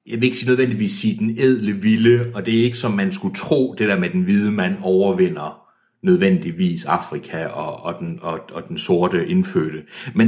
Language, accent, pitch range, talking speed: Danish, native, 115-185 Hz, 185 wpm